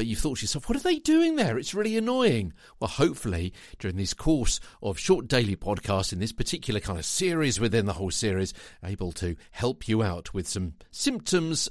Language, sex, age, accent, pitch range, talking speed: English, male, 50-69, British, 95-140 Hz, 200 wpm